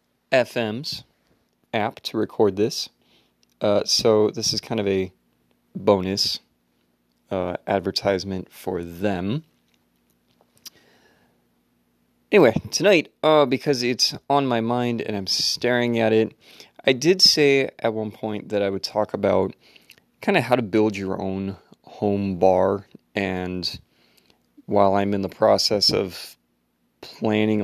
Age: 30-49